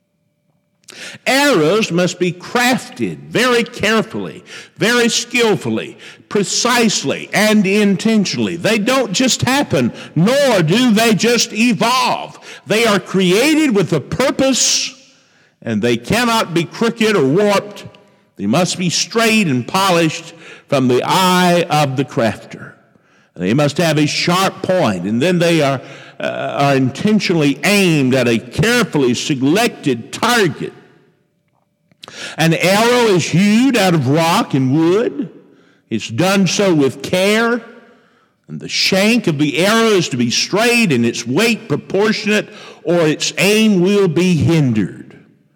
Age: 50-69